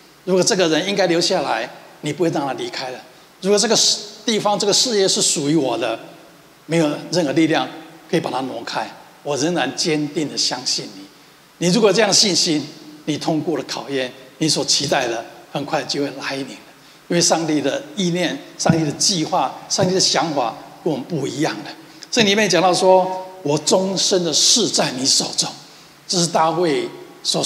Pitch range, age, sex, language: 150-185 Hz, 60-79, male, Chinese